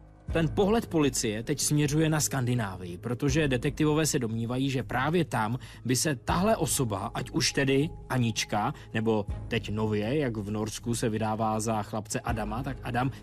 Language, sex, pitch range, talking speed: Czech, male, 110-155 Hz, 160 wpm